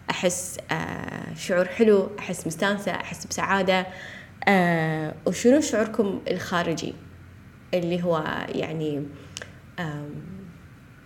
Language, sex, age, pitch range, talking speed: Arabic, female, 20-39, 160-215 Hz, 85 wpm